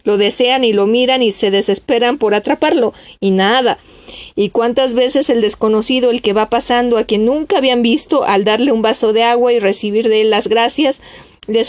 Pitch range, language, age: 215-260 Hz, Spanish, 40-59